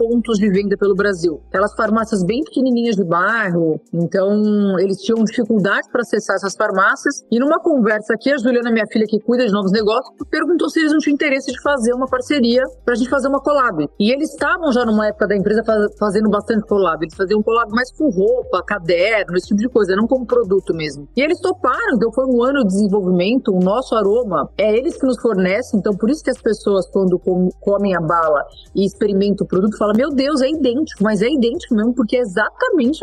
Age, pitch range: 40-59, 200-260 Hz